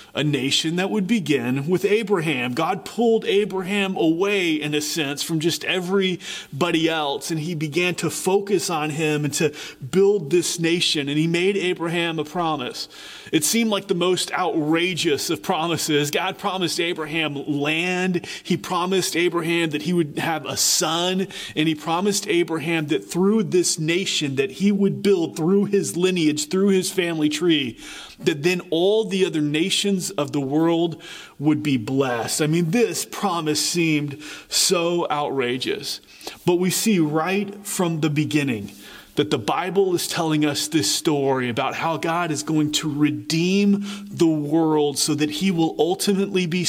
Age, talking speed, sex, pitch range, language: 30-49, 160 wpm, male, 150-185 Hz, English